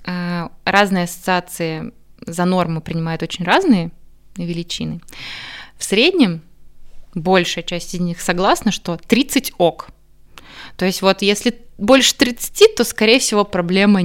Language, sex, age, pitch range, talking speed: Russian, female, 20-39, 170-210 Hz, 120 wpm